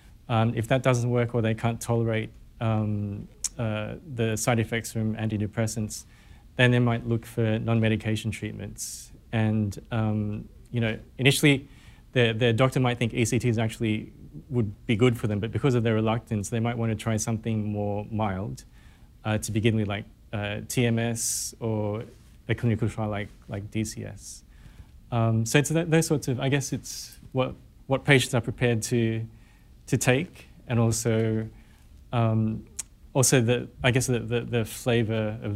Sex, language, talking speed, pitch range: male, English, 160 wpm, 105-120 Hz